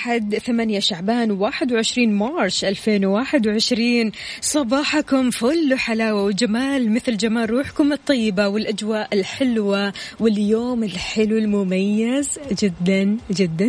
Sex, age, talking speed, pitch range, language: female, 20-39, 90 wpm, 200-255 Hz, Arabic